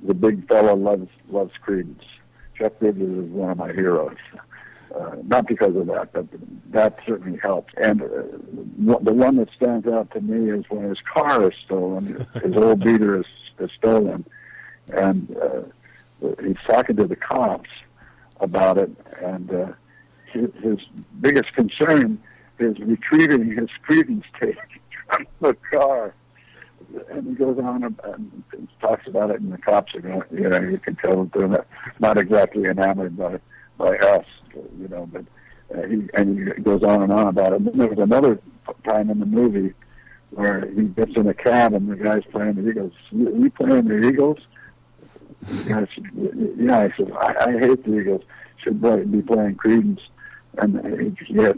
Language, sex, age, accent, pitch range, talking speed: English, male, 60-79, American, 100-120 Hz, 175 wpm